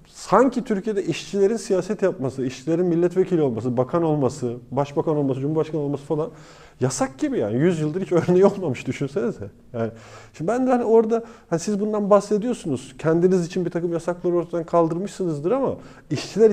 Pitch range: 130-185 Hz